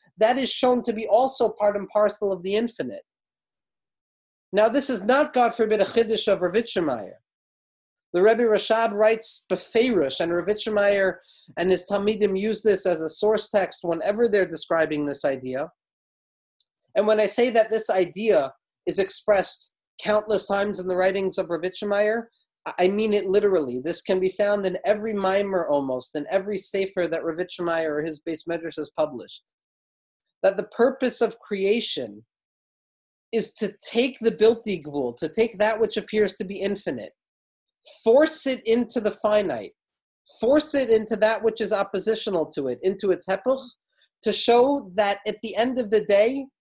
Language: English